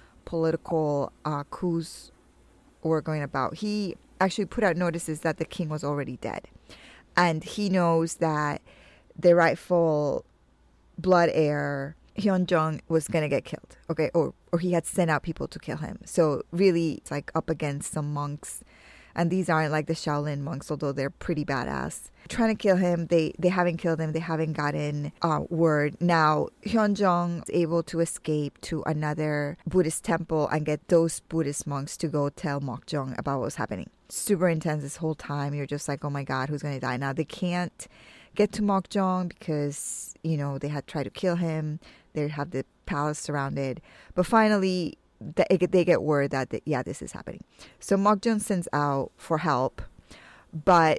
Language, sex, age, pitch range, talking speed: English, female, 20-39, 145-175 Hz, 180 wpm